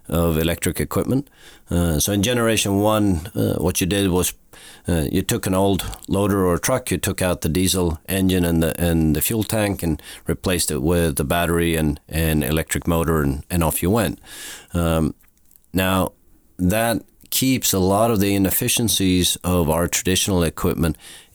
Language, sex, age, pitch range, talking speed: English, male, 40-59, 85-100 Hz, 170 wpm